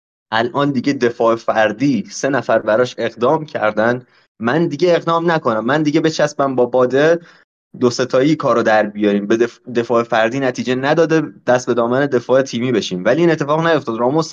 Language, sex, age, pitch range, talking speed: Persian, male, 20-39, 120-160 Hz, 170 wpm